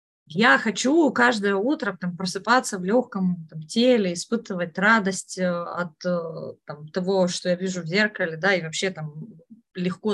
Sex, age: female, 20-39